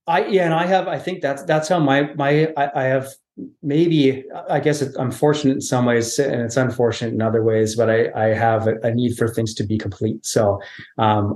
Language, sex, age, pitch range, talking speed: English, male, 30-49, 110-135 Hz, 225 wpm